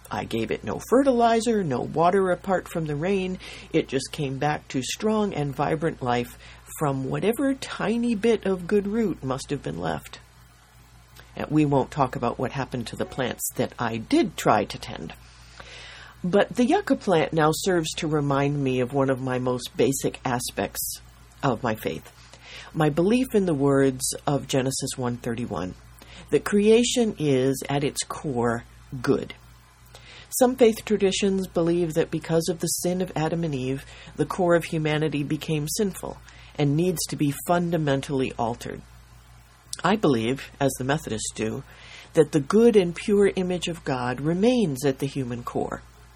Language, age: English, 50-69